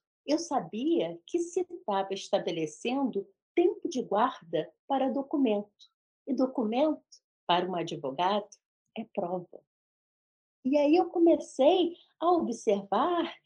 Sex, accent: female, Brazilian